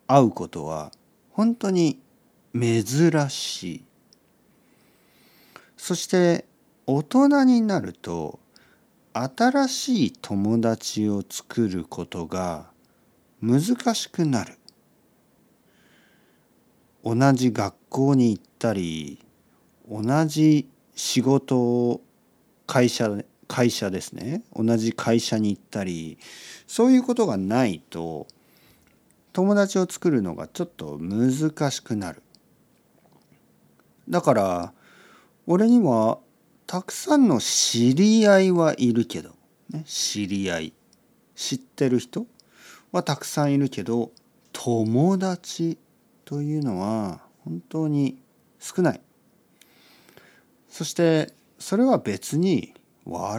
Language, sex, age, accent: Japanese, male, 50-69, native